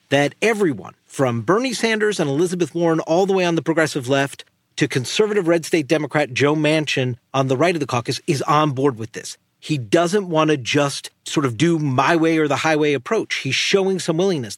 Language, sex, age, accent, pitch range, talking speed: English, male, 40-59, American, 125-175 Hz, 210 wpm